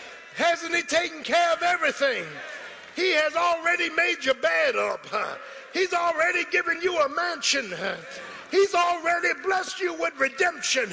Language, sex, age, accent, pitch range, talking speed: English, male, 50-69, American, 335-350 Hz, 150 wpm